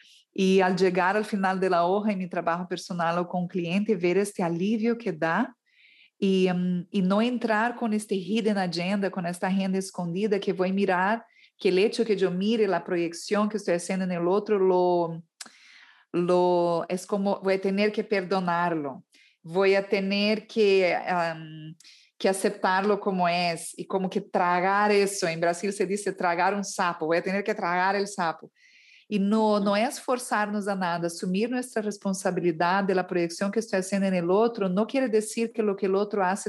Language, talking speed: Spanish, 190 wpm